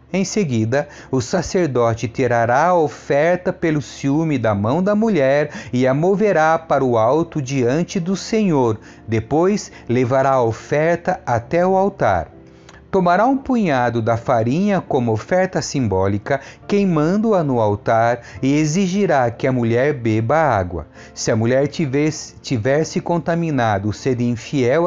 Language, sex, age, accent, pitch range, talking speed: Portuguese, male, 40-59, Brazilian, 115-175 Hz, 130 wpm